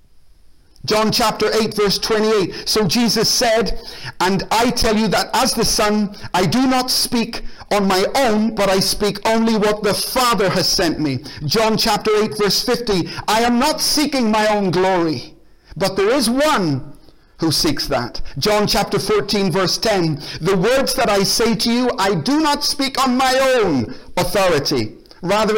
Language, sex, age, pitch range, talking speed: English, male, 50-69, 180-230 Hz, 170 wpm